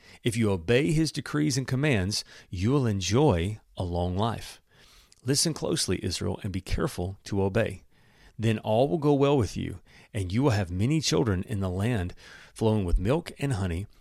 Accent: American